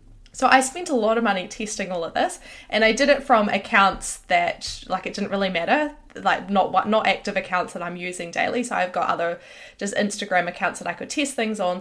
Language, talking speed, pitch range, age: English, 230 wpm, 195-255 Hz, 20-39